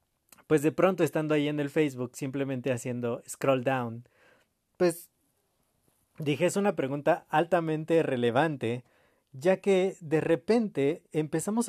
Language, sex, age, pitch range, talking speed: Spanish, male, 30-49, 130-170 Hz, 125 wpm